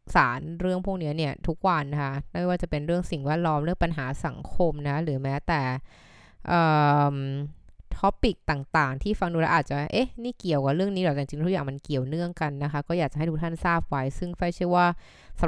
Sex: female